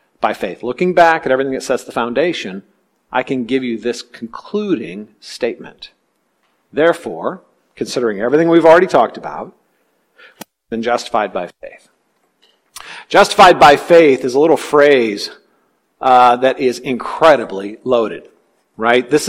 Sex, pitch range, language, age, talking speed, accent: male, 125-170 Hz, English, 50-69, 135 wpm, American